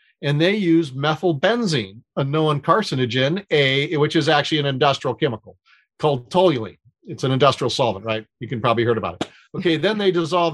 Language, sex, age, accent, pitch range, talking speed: English, male, 40-59, American, 140-170 Hz, 180 wpm